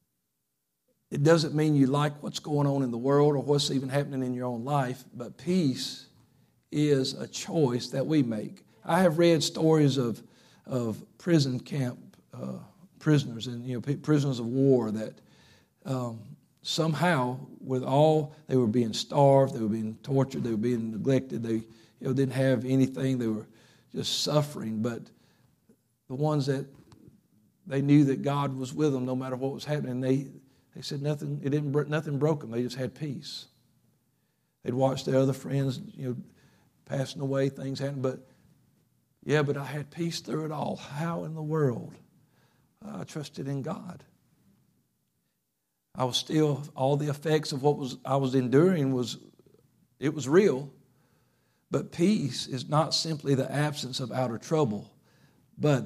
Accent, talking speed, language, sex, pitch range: American, 165 wpm, English, male, 125-150 Hz